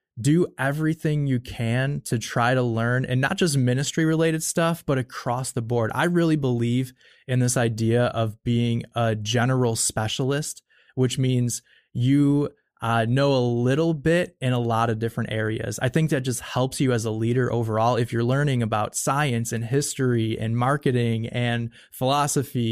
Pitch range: 115-135 Hz